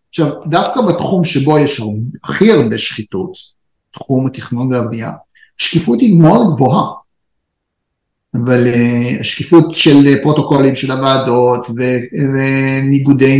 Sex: male